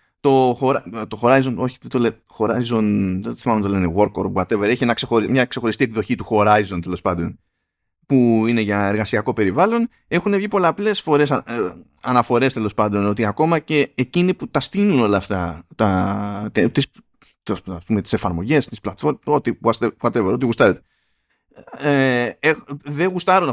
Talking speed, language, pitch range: 165 wpm, Greek, 110-160 Hz